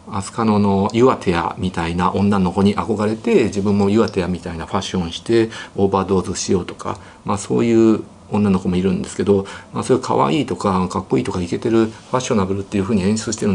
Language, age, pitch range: Japanese, 50-69, 95-115 Hz